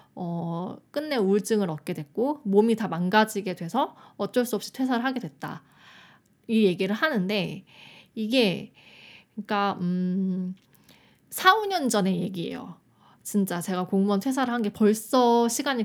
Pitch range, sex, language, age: 190-245 Hz, female, Korean, 20-39